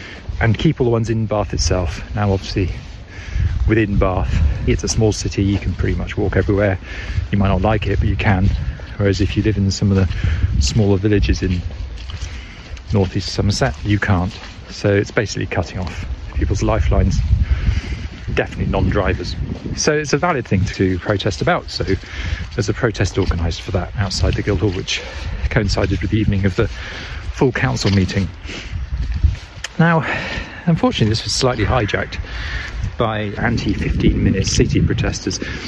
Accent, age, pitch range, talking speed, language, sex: British, 40-59, 90-110 Hz, 155 wpm, English, male